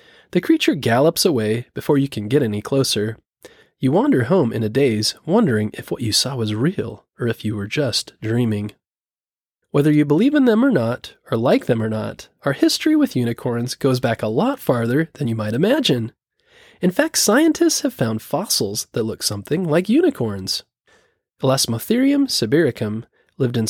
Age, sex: 20-39, male